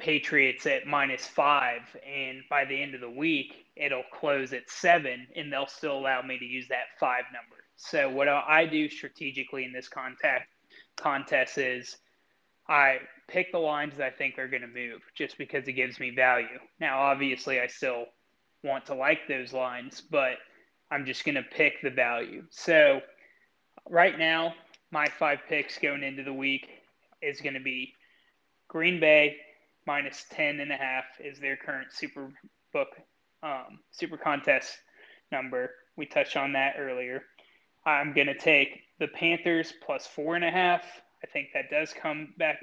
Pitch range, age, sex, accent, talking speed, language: 135-160 Hz, 20-39, male, American, 170 wpm, English